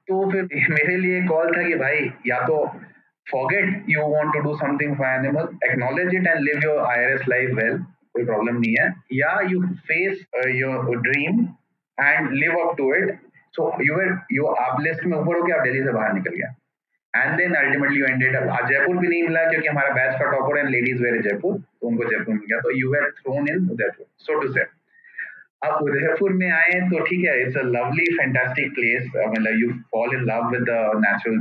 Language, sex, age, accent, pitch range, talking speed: English, male, 30-49, Indian, 125-175 Hz, 140 wpm